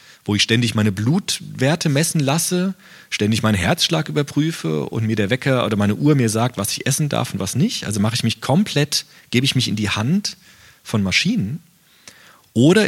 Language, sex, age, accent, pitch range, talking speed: German, male, 40-59, German, 105-145 Hz, 190 wpm